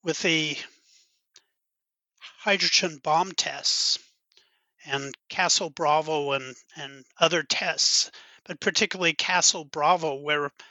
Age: 50-69